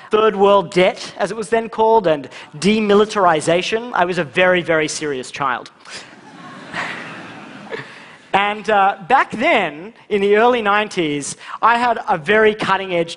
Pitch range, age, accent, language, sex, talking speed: 170-225 Hz, 30-49, Australian, Russian, male, 130 wpm